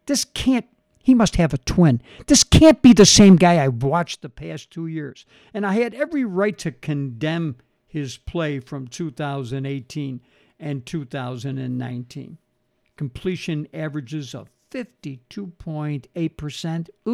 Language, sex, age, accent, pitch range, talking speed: English, male, 60-79, American, 150-200 Hz, 125 wpm